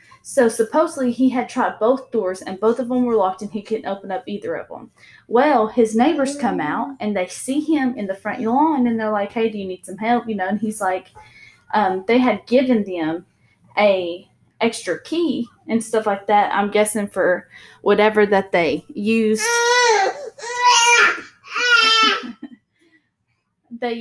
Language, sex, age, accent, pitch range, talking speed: English, female, 10-29, American, 190-250 Hz, 170 wpm